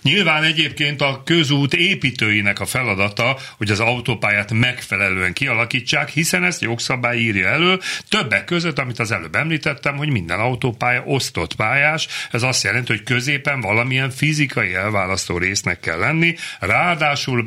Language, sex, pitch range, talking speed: Hungarian, male, 95-135 Hz, 135 wpm